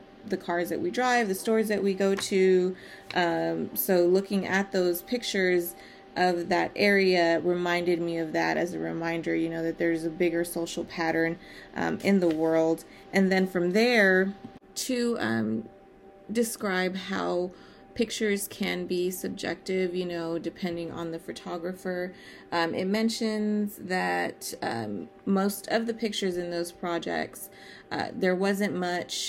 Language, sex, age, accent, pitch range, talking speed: English, female, 30-49, American, 170-195 Hz, 150 wpm